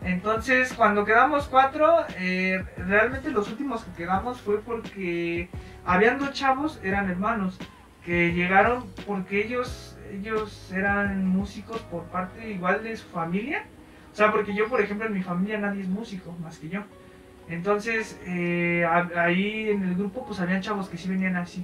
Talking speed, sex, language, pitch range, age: 165 wpm, male, Spanish, 175-220 Hz, 20-39